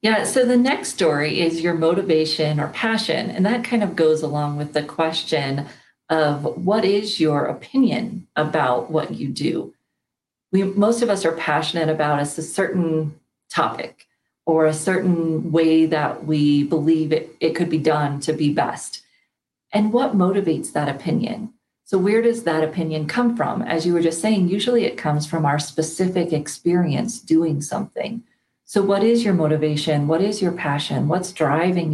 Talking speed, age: 170 wpm, 40-59